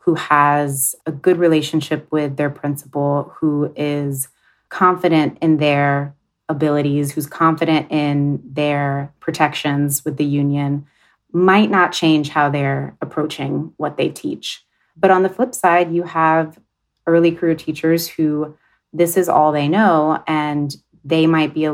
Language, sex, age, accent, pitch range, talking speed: English, female, 30-49, American, 145-165 Hz, 145 wpm